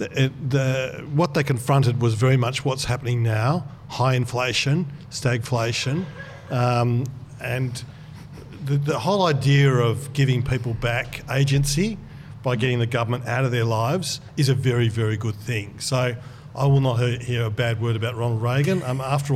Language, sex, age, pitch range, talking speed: English, male, 50-69, 120-140 Hz, 160 wpm